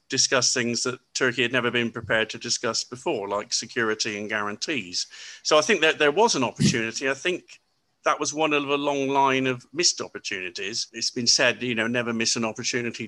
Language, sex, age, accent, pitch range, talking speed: English, male, 50-69, British, 115-135 Hz, 200 wpm